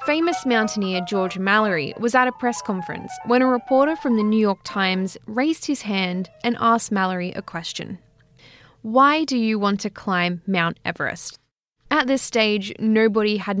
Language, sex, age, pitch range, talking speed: English, female, 10-29, 190-230 Hz, 170 wpm